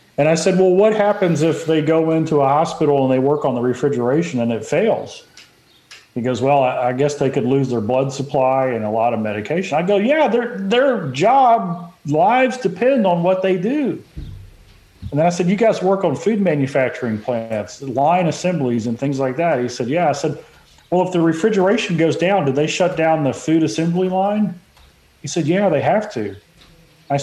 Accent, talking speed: American, 200 wpm